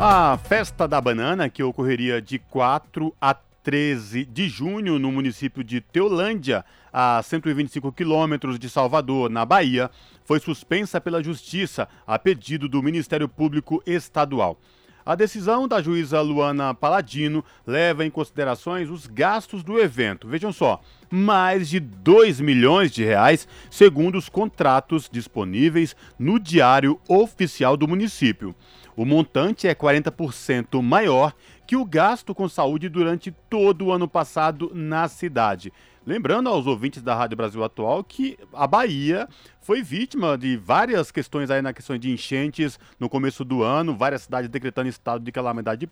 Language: Portuguese